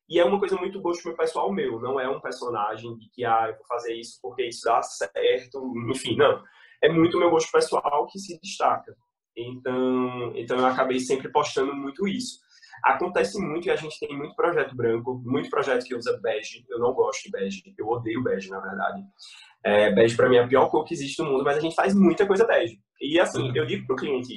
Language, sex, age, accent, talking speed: Portuguese, male, 20-39, Brazilian, 225 wpm